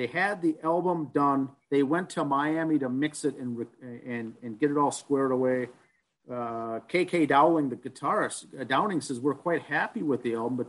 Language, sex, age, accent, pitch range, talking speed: English, male, 50-69, American, 130-160 Hz, 195 wpm